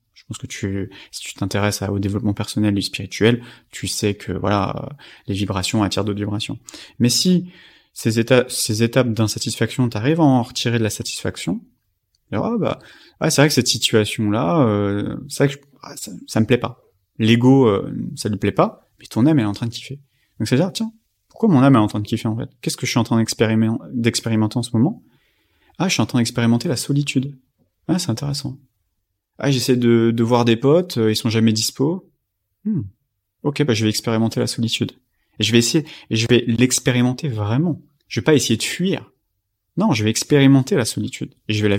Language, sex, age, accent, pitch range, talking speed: French, male, 30-49, French, 105-130 Hz, 210 wpm